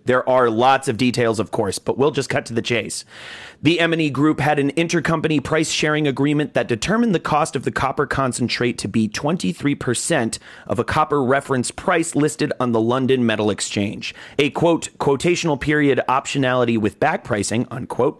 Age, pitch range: 30-49, 110-150 Hz